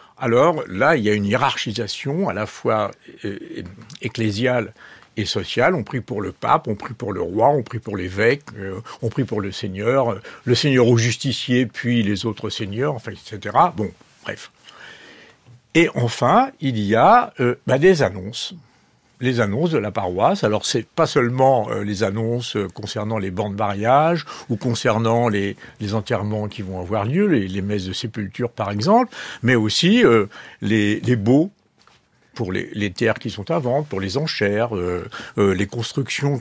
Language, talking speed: French, 180 wpm